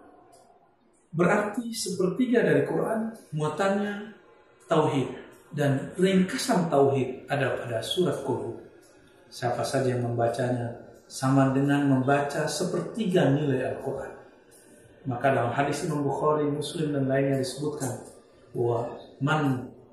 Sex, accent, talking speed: male, native, 100 wpm